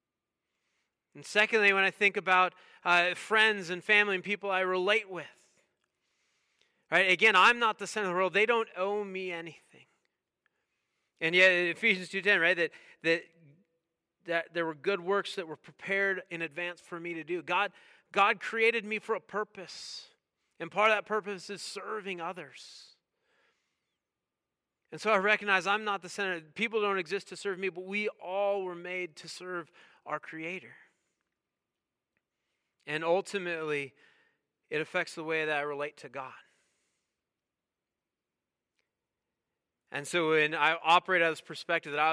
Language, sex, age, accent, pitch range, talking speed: English, male, 40-59, American, 165-205 Hz, 155 wpm